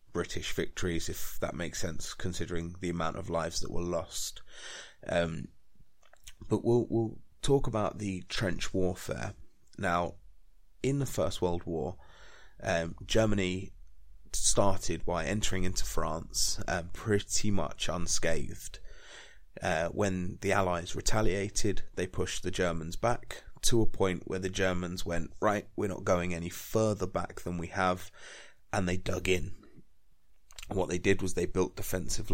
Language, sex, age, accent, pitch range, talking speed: English, male, 30-49, British, 85-100 Hz, 145 wpm